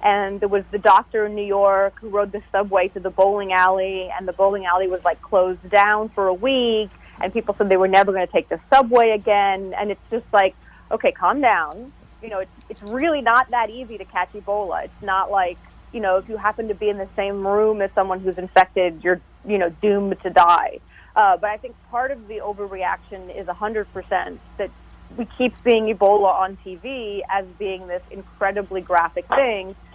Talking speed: 210 wpm